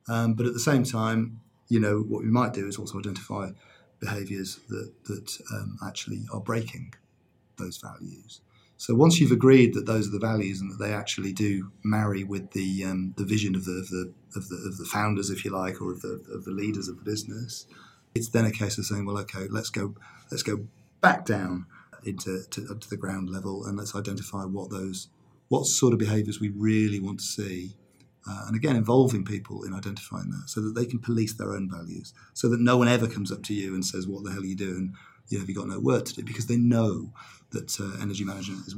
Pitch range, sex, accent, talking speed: 100-120 Hz, male, British, 230 wpm